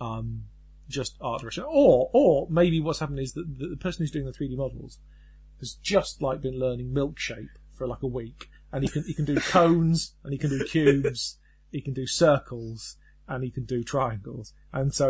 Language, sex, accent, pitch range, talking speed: English, male, British, 120-165 Hz, 205 wpm